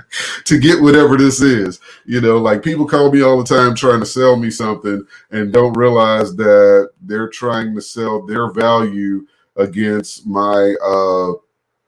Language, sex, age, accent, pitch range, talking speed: English, male, 30-49, American, 105-130 Hz, 160 wpm